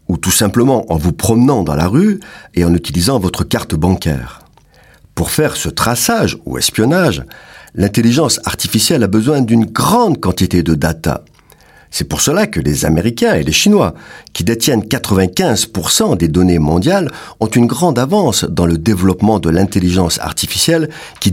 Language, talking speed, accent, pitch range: French, 160 wpm, French, 90-145 Hz